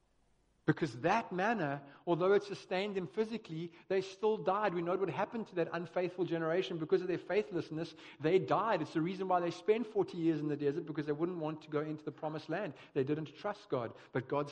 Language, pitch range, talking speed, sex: English, 135-175 Hz, 215 wpm, male